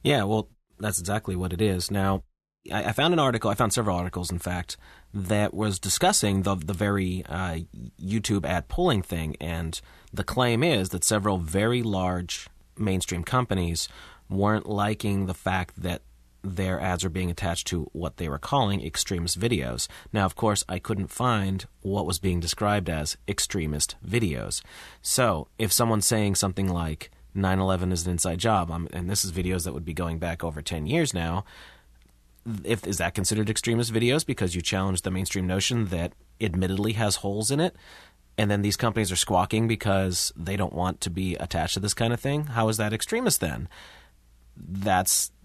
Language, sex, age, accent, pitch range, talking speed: English, male, 30-49, American, 90-110 Hz, 180 wpm